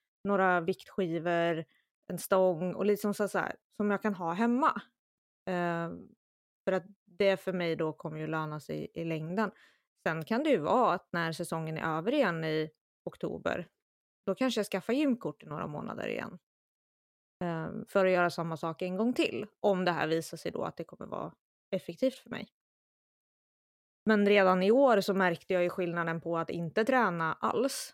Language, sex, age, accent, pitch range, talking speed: Swedish, female, 20-39, native, 170-215 Hz, 180 wpm